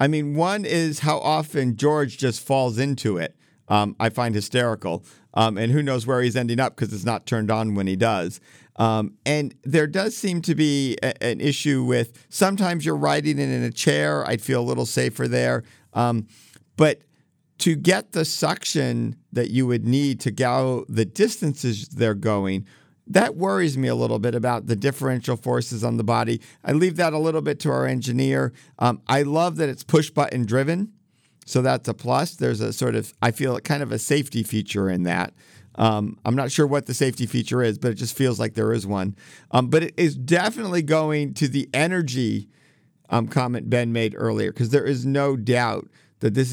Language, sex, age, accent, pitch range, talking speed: English, male, 50-69, American, 115-150 Hz, 200 wpm